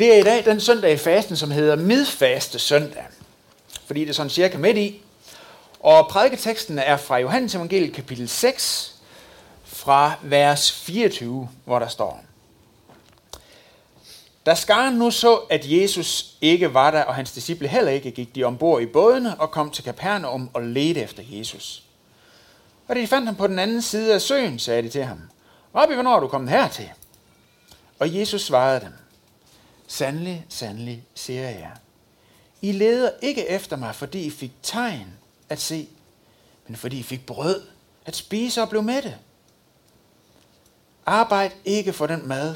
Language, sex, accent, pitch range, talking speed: Danish, male, native, 135-205 Hz, 165 wpm